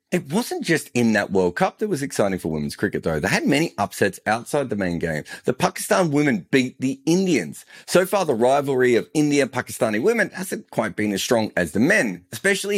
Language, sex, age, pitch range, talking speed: English, male, 30-49, 105-165 Hz, 210 wpm